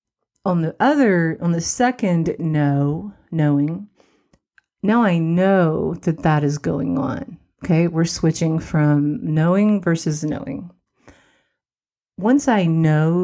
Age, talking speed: 40-59, 120 wpm